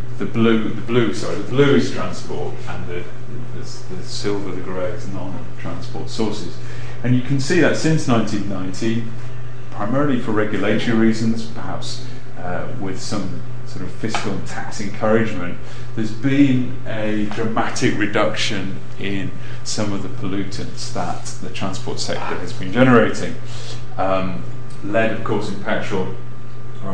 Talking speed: 145 wpm